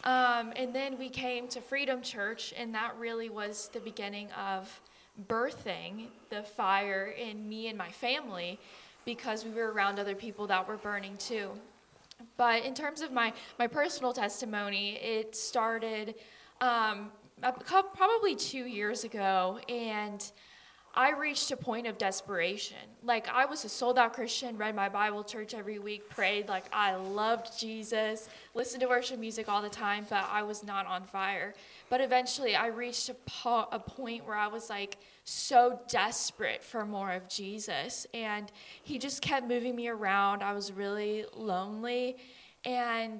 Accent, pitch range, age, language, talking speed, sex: American, 205-245 Hz, 10-29, English, 160 wpm, female